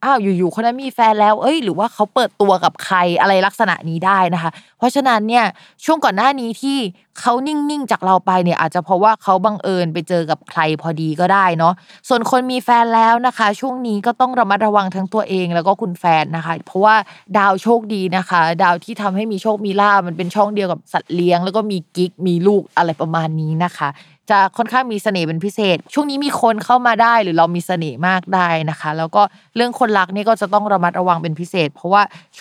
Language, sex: Thai, female